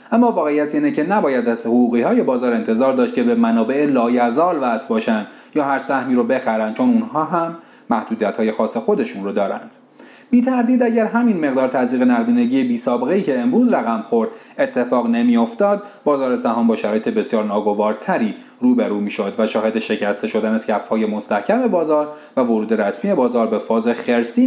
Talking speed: 175 wpm